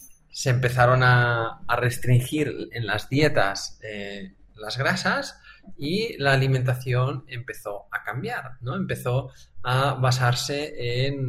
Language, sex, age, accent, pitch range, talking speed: Spanish, male, 20-39, Spanish, 115-145 Hz, 115 wpm